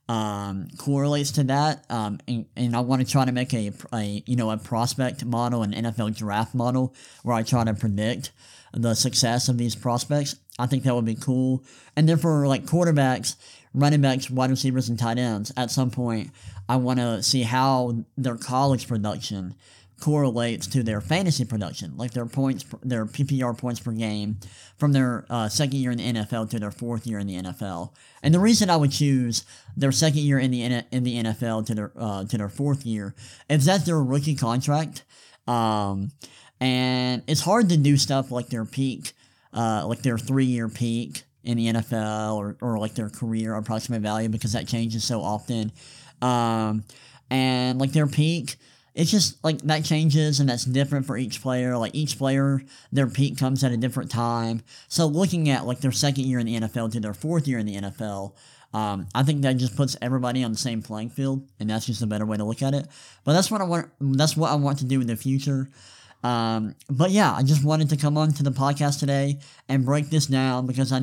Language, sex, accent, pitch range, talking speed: English, male, American, 115-140 Hz, 205 wpm